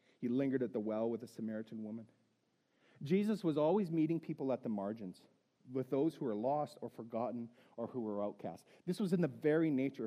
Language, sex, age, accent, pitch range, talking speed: English, male, 40-59, American, 130-180 Hz, 205 wpm